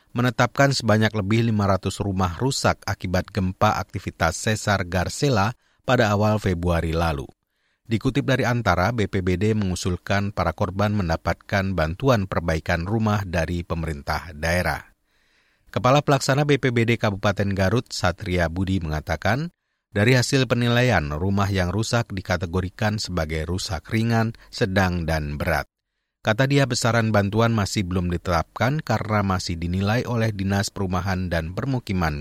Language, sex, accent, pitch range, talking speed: Indonesian, male, native, 90-115 Hz, 120 wpm